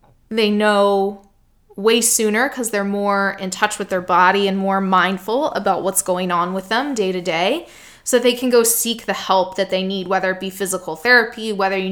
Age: 20-39